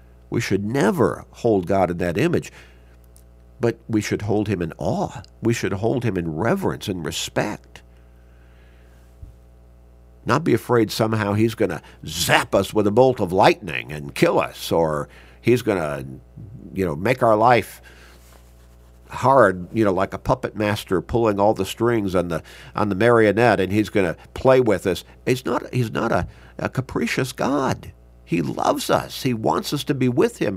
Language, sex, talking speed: English, male, 175 wpm